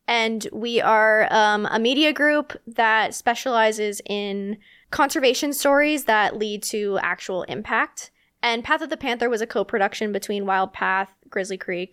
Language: English